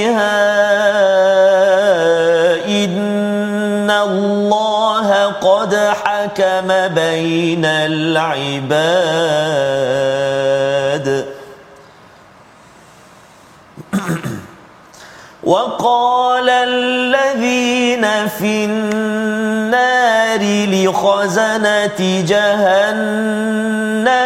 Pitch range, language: 160-205 Hz, Malayalam